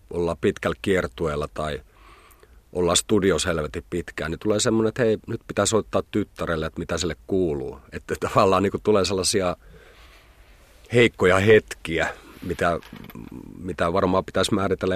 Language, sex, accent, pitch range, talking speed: Finnish, male, native, 80-105 Hz, 130 wpm